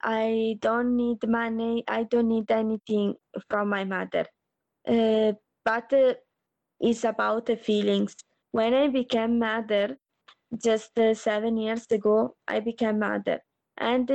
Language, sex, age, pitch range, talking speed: Malayalam, female, 20-39, 220-245 Hz, 130 wpm